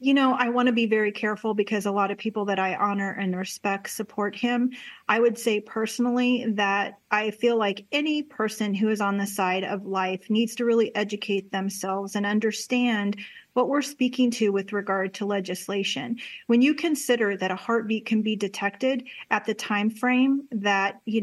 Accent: American